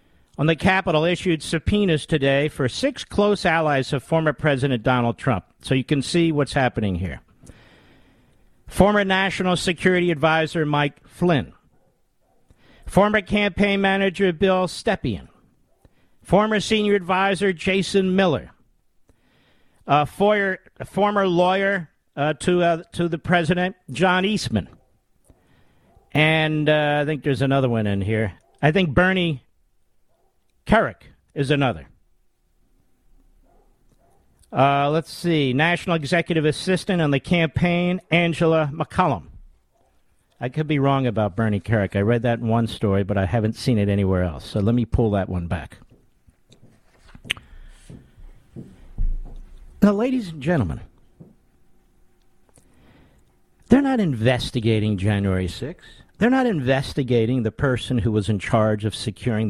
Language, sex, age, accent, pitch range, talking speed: English, male, 50-69, American, 120-180 Hz, 125 wpm